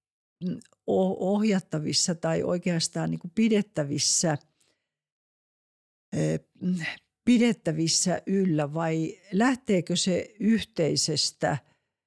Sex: female